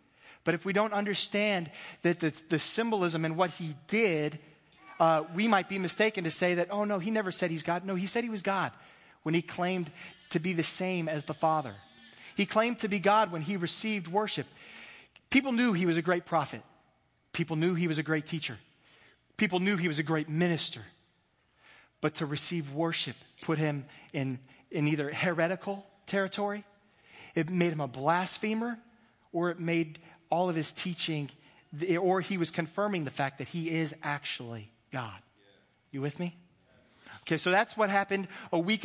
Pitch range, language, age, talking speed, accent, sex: 150-185 Hz, English, 30-49, 180 wpm, American, male